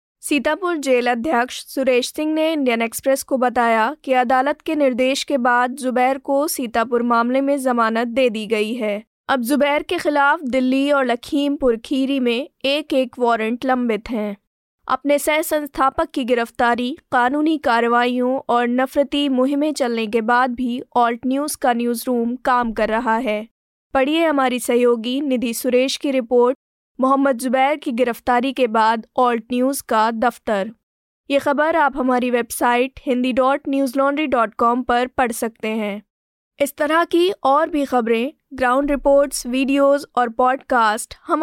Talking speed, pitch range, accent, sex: 150 wpm, 240-280 Hz, native, female